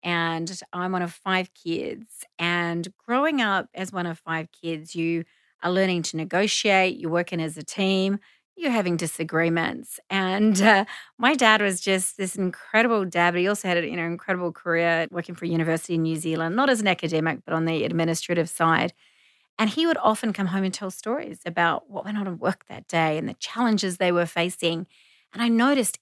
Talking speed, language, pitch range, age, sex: 195 wpm, English, 165-220 Hz, 30-49, female